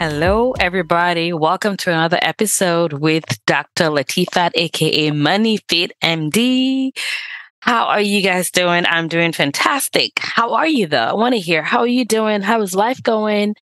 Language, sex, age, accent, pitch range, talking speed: English, female, 20-39, American, 155-210 Hz, 165 wpm